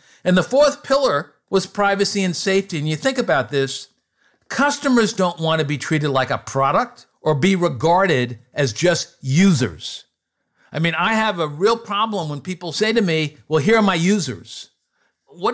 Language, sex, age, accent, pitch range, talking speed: English, male, 50-69, American, 150-200 Hz, 180 wpm